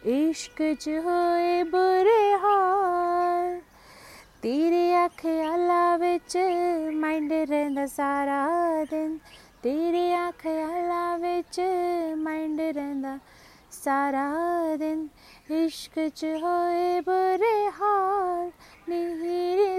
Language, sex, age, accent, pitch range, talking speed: Hindi, female, 30-49, native, 310-355 Hz, 65 wpm